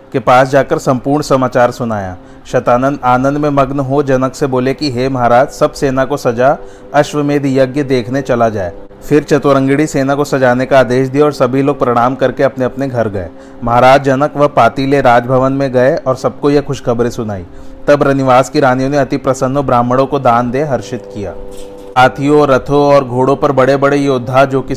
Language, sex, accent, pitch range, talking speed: Hindi, male, native, 125-140 Hz, 190 wpm